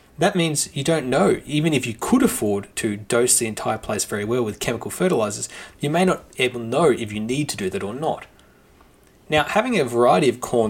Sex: male